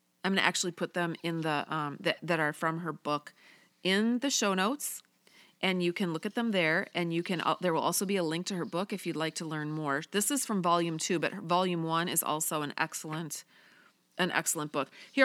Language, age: English, 30-49